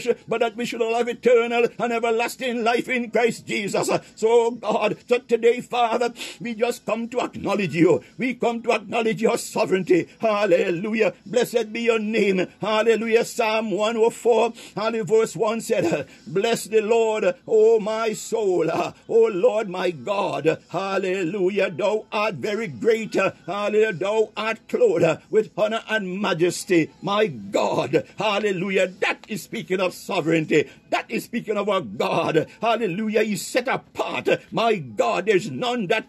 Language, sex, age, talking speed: English, male, 60-79, 145 wpm